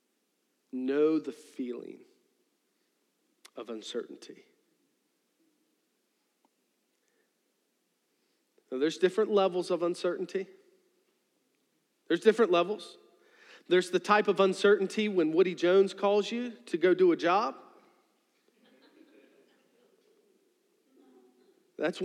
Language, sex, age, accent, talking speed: English, male, 40-59, American, 80 wpm